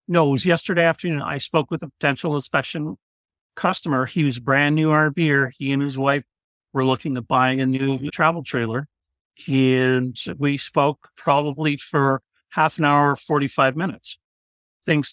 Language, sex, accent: English, male, American